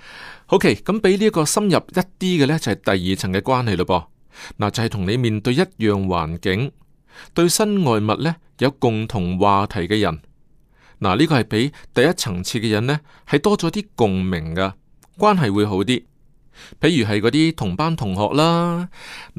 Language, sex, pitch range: Chinese, male, 105-155 Hz